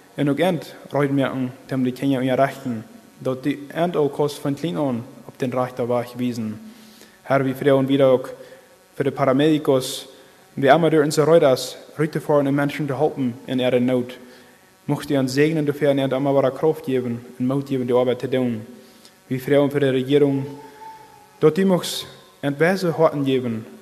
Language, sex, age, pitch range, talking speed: English, male, 20-39, 130-150 Hz, 115 wpm